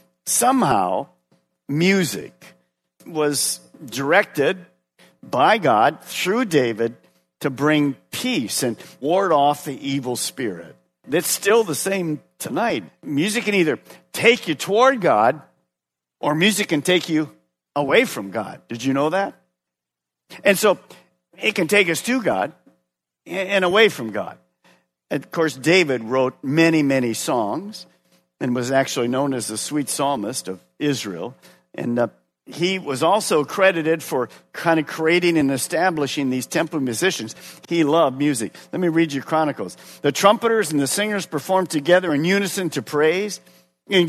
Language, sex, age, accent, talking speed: English, male, 50-69, American, 145 wpm